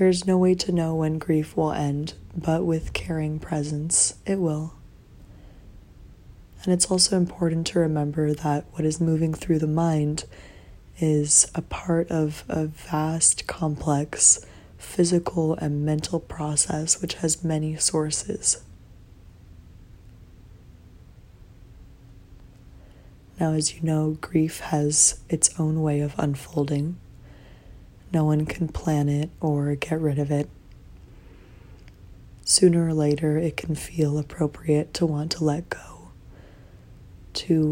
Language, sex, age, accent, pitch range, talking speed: English, female, 20-39, American, 105-165 Hz, 120 wpm